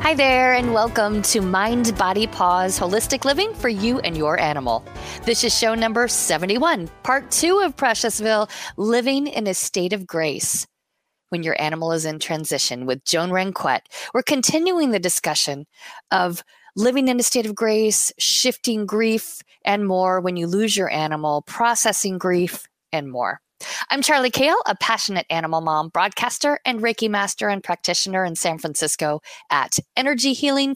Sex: female